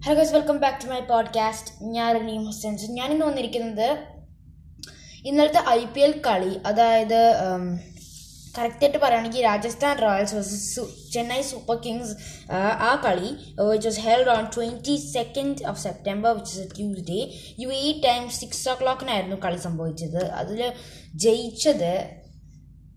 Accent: native